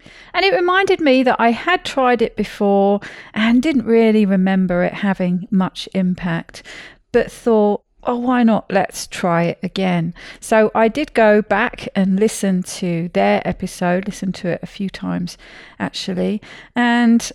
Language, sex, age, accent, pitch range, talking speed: English, female, 40-59, British, 175-220 Hz, 155 wpm